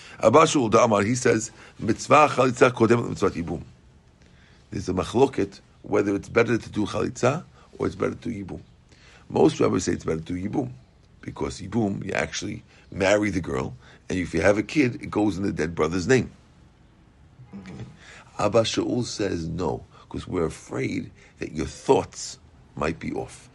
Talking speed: 155 wpm